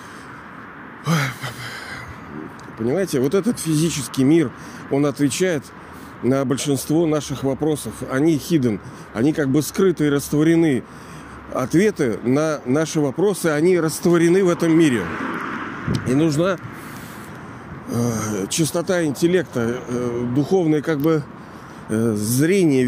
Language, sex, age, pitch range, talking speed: Russian, male, 40-59, 130-170 Hz, 90 wpm